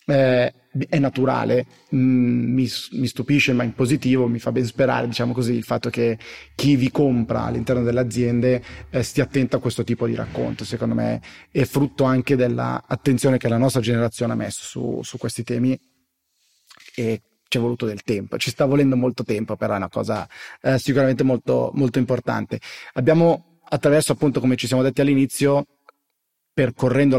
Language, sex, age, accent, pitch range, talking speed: Italian, male, 30-49, native, 115-130 Hz, 170 wpm